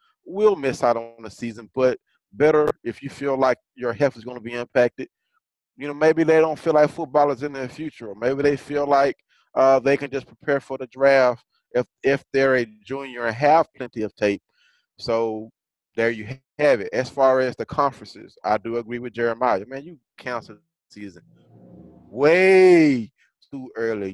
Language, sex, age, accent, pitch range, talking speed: English, male, 30-49, American, 110-140 Hz, 190 wpm